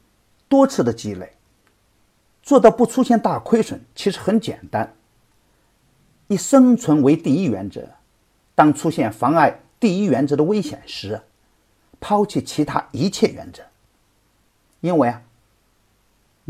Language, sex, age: Chinese, male, 50-69